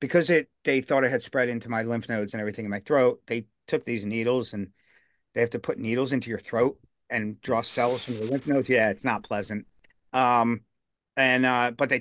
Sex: male